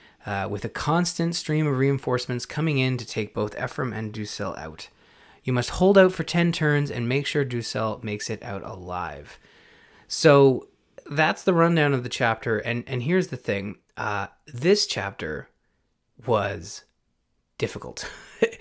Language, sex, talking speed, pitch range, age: English, male, 155 wpm, 110-150 Hz, 20-39